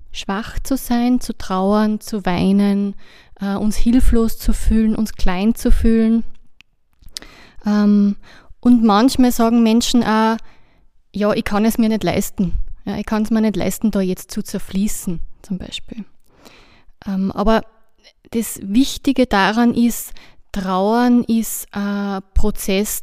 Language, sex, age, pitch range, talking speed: German, female, 20-39, 200-230 Hz, 125 wpm